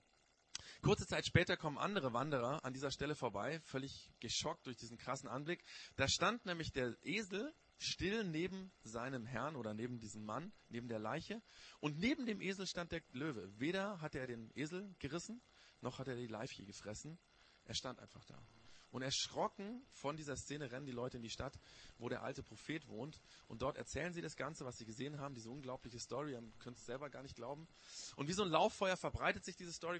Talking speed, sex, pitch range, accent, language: 200 wpm, male, 115-160 Hz, German, German